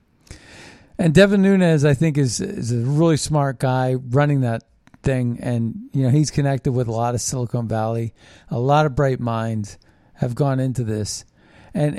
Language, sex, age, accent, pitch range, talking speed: English, male, 50-69, American, 130-160 Hz, 175 wpm